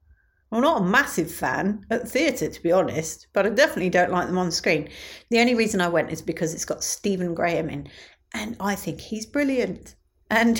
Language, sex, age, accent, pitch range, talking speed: English, female, 40-59, British, 160-235 Hz, 210 wpm